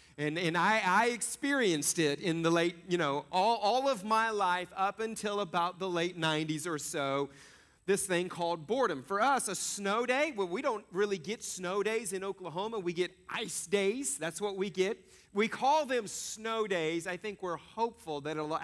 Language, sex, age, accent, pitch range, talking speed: English, male, 40-59, American, 170-225 Hz, 195 wpm